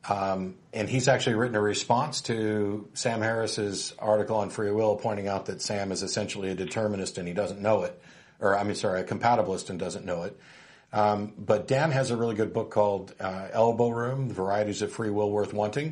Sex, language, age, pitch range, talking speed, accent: male, English, 50-69, 100-125 Hz, 205 wpm, American